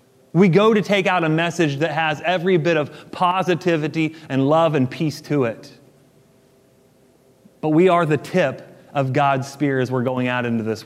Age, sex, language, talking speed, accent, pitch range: 30-49, male, English, 180 wpm, American, 135-170 Hz